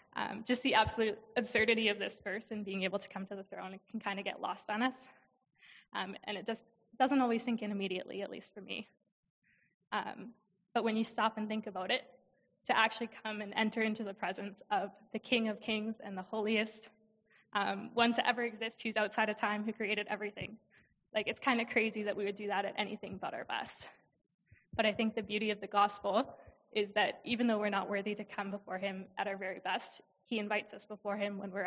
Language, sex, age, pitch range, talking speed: English, female, 20-39, 195-220 Hz, 225 wpm